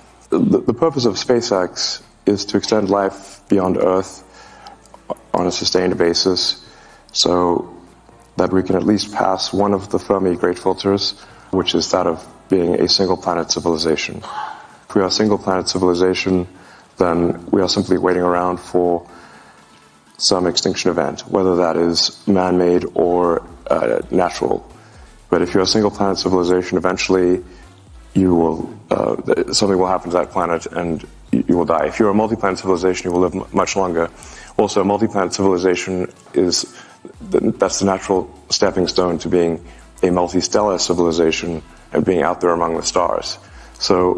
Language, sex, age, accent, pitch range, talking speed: English, male, 30-49, American, 90-100 Hz, 155 wpm